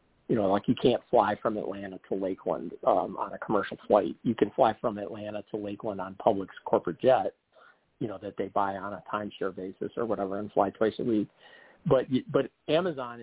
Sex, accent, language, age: male, American, English, 50-69